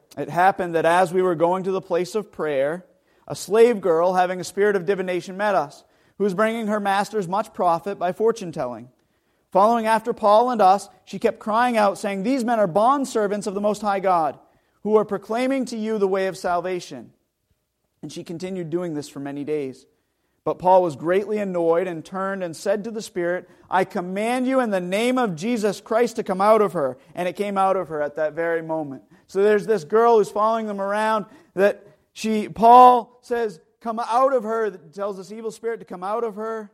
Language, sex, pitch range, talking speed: English, male, 175-220 Hz, 210 wpm